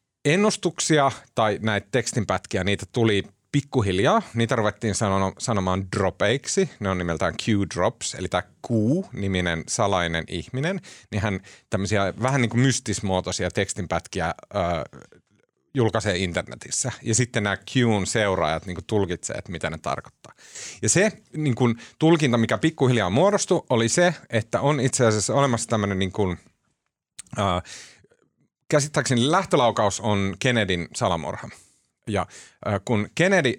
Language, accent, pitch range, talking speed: Finnish, native, 95-125 Hz, 120 wpm